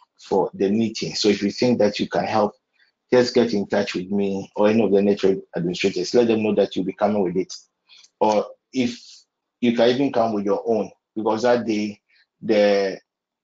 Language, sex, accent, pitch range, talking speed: English, male, Nigerian, 105-115 Hz, 200 wpm